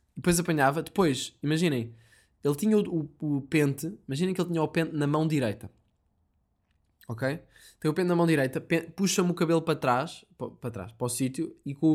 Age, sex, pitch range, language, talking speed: 20-39, male, 120-165 Hz, Portuguese, 195 wpm